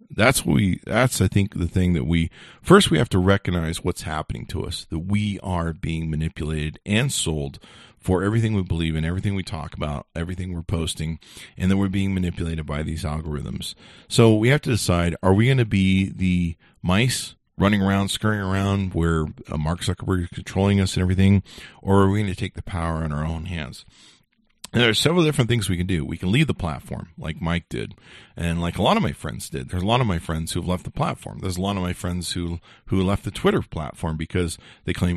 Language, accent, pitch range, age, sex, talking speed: English, American, 85-100 Hz, 40-59, male, 225 wpm